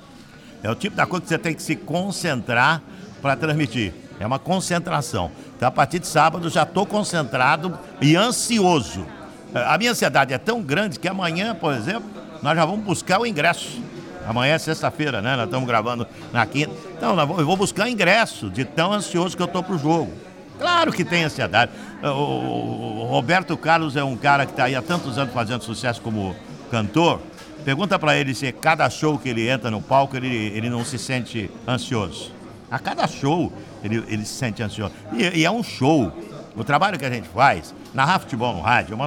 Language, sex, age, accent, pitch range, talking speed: Portuguese, male, 60-79, Brazilian, 120-175 Hz, 195 wpm